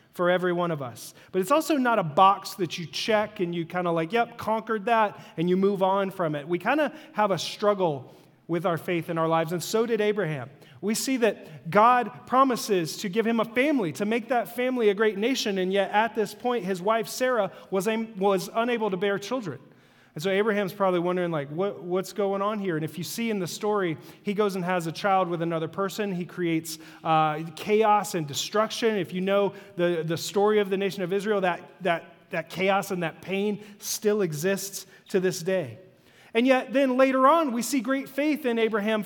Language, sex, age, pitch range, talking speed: English, male, 30-49, 170-220 Hz, 220 wpm